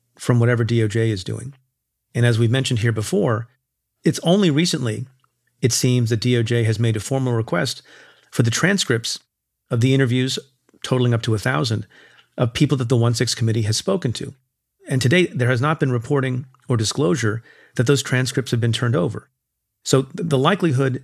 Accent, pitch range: American, 115-135 Hz